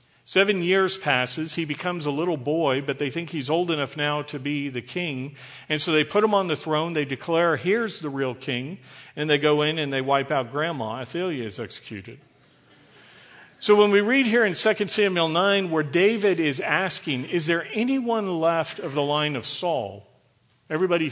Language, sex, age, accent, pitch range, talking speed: English, male, 50-69, American, 135-170 Hz, 195 wpm